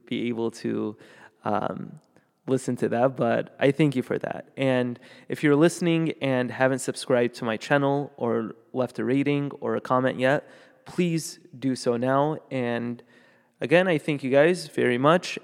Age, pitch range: 20-39, 120-145 Hz